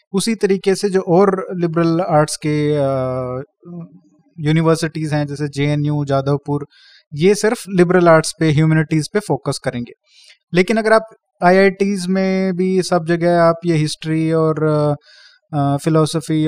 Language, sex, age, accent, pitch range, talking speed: Hindi, male, 30-49, native, 150-185 Hz, 125 wpm